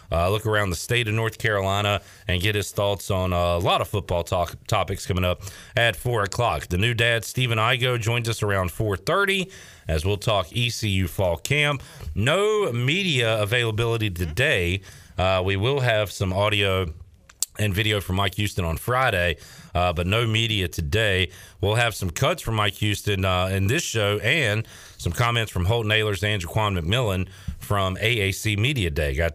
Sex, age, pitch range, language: male, 40-59, 95-120 Hz, English